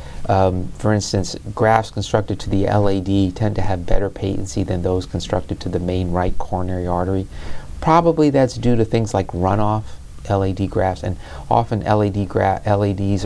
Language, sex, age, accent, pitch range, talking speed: English, male, 40-59, American, 90-110 Hz, 155 wpm